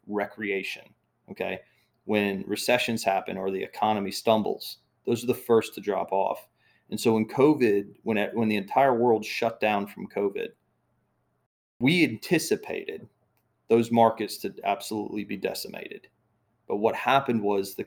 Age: 30-49